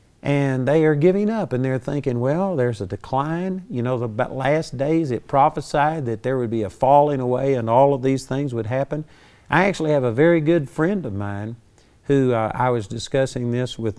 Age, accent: 50-69, American